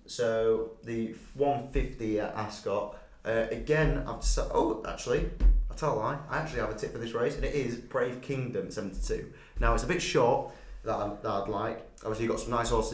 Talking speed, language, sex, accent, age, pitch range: 210 wpm, English, male, British, 20-39, 95-120 Hz